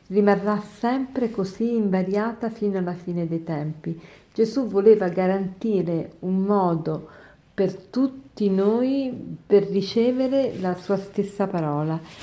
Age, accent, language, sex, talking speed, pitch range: 50-69, native, Italian, female, 115 wpm, 170-220 Hz